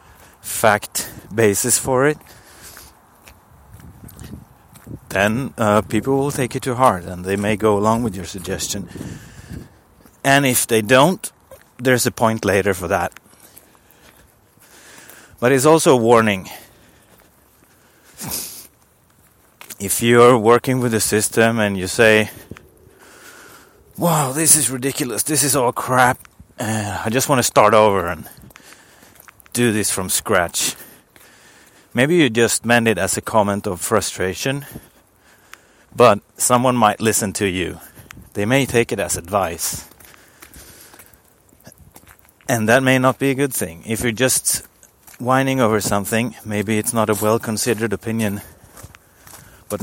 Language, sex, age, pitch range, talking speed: English, male, 30-49, 100-125 Hz, 130 wpm